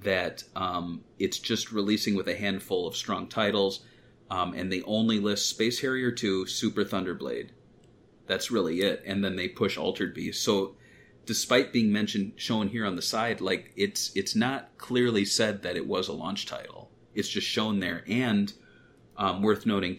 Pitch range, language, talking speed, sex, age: 95-110 Hz, English, 175 wpm, male, 30-49